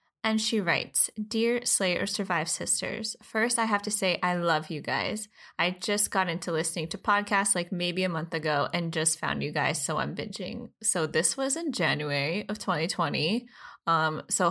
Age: 10-29